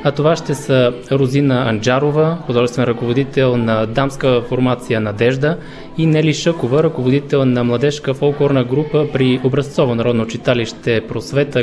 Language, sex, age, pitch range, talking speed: Bulgarian, male, 20-39, 120-145 Hz, 130 wpm